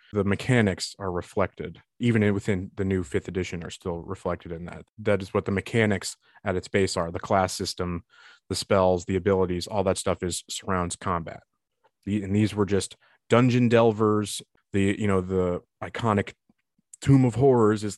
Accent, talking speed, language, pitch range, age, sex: American, 175 wpm, English, 95-110 Hz, 30-49, male